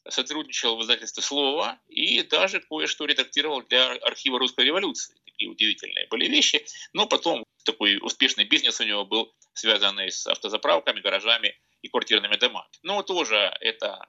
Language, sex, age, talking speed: Russian, male, 30-49, 145 wpm